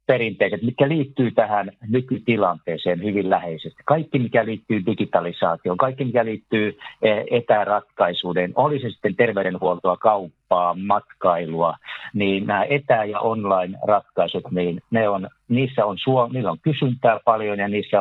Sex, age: male, 50-69